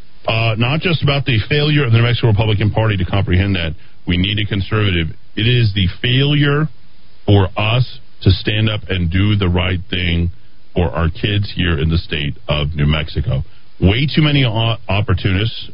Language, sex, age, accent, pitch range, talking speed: English, male, 40-59, American, 90-115 Hz, 185 wpm